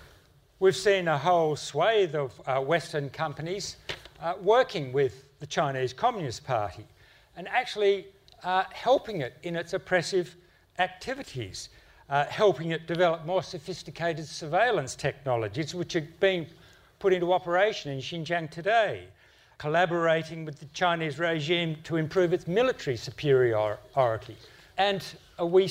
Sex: male